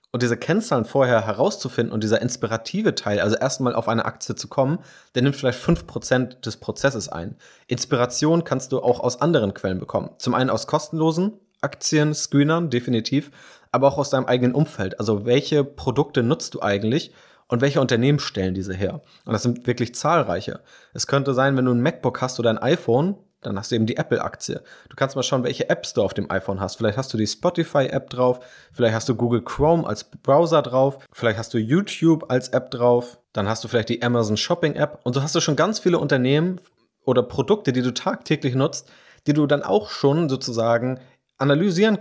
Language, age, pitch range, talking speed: German, 30-49, 120-150 Hz, 195 wpm